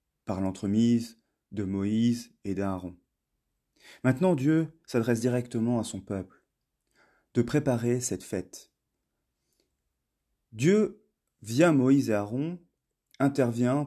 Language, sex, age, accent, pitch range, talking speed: French, male, 30-49, French, 105-130 Hz, 100 wpm